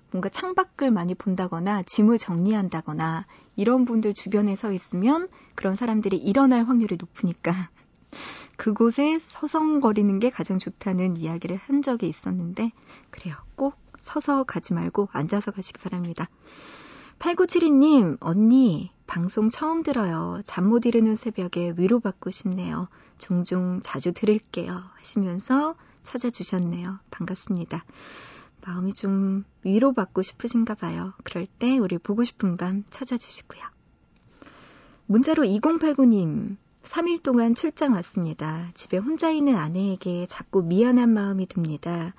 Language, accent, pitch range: Korean, native, 180-245 Hz